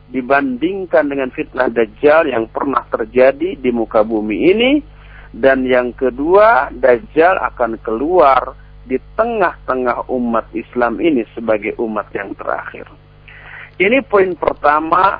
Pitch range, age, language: 145-225 Hz, 50-69, Indonesian